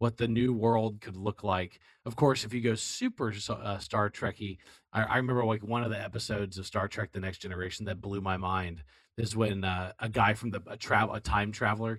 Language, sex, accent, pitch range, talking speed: English, male, American, 100-125 Hz, 235 wpm